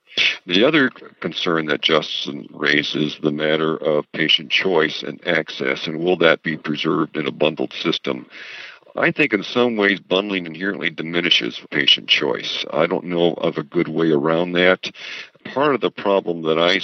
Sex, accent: male, American